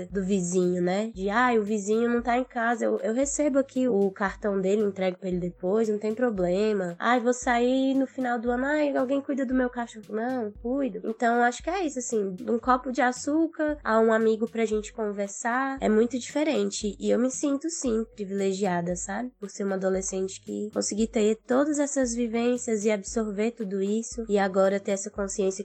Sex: female